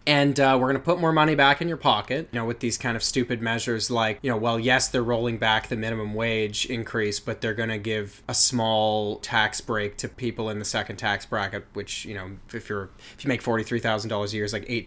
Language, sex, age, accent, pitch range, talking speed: English, male, 20-39, American, 115-135 Hz, 245 wpm